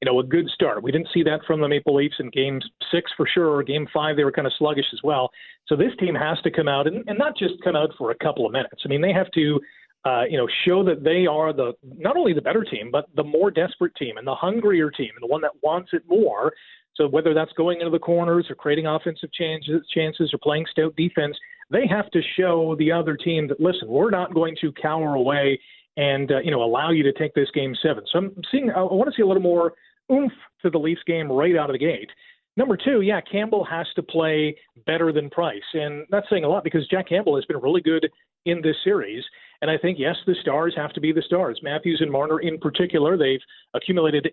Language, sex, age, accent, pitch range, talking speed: English, male, 40-59, American, 150-185 Hz, 250 wpm